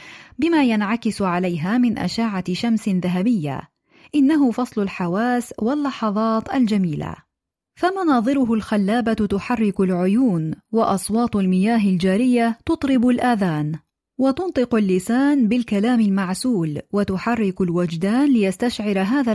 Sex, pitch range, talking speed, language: female, 190-245 Hz, 90 wpm, Arabic